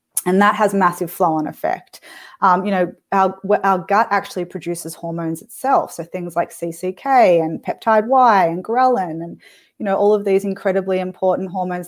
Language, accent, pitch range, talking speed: English, Australian, 175-205 Hz, 175 wpm